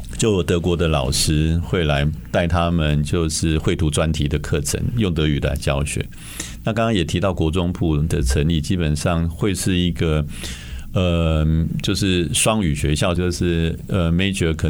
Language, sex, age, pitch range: Chinese, male, 50-69, 75-95 Hz